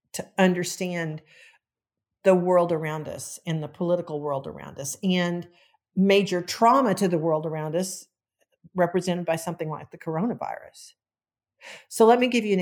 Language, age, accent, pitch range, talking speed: English, 50-69, American, 165-210 Hz, 150 wpm